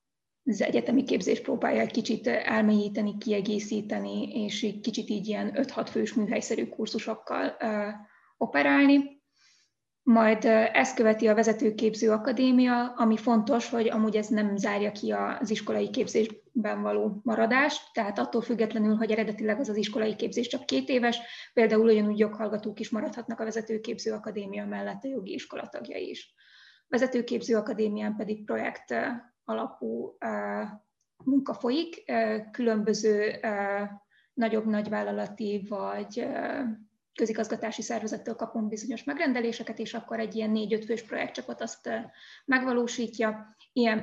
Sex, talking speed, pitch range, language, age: female, 125 wpm, 215-235 Hz, Hungarian, 20-39